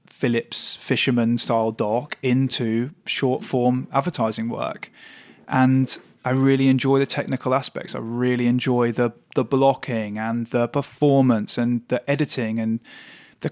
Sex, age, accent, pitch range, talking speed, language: male, 20-39, British, 115-140 Hz, 135 wpm, English